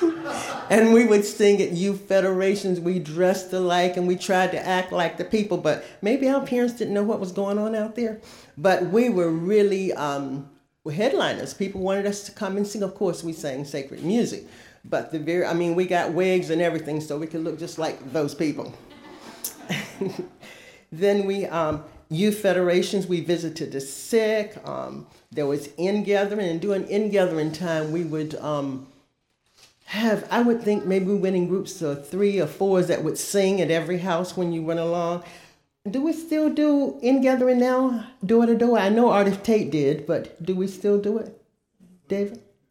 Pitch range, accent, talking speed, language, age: 160-205 Hz, American, 180 wpm, English, 50-69